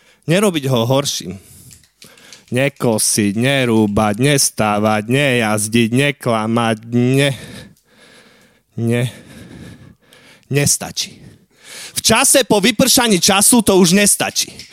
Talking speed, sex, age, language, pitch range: 75 wpm, male, 30-49, Slovak, 120-190 Hz